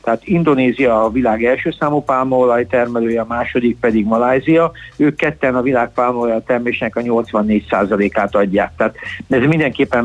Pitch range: 115-140 Hz